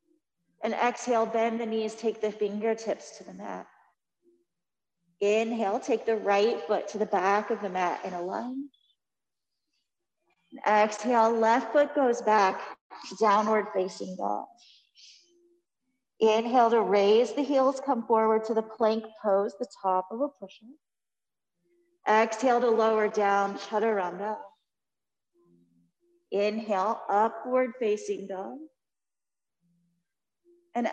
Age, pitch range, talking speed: 40-59, 205-255 Hz, 115 wpm